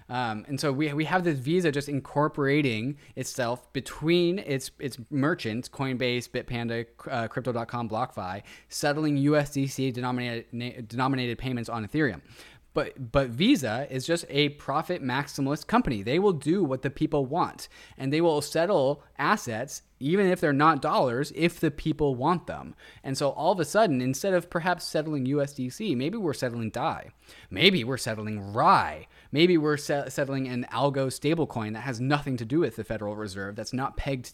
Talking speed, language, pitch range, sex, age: 165 wpm, English, 115-150 Hz, male, 20-39